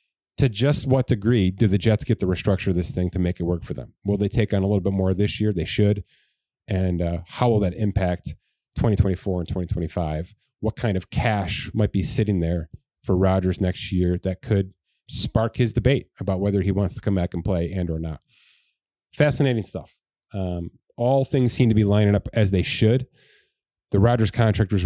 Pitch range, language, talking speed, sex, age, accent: 95-115 Hz, English, 205 wpm, male, 30-49, American